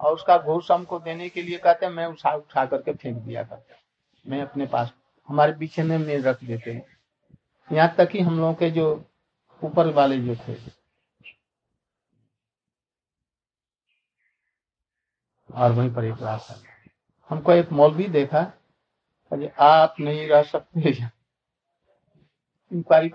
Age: 60-79